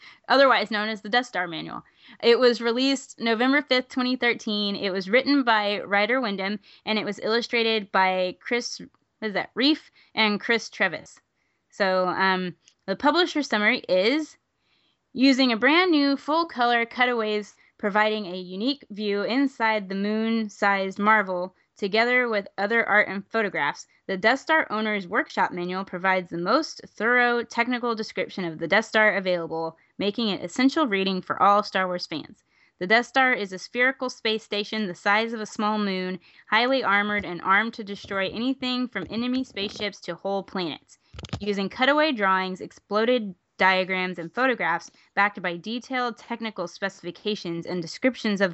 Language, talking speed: English, 155 wpm